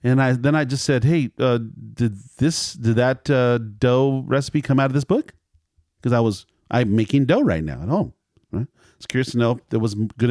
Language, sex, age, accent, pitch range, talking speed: English, male, 40-59, American, 95-130 Hz, 220 wpm